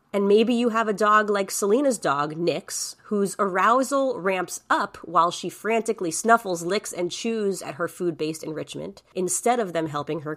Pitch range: 170-225 Hz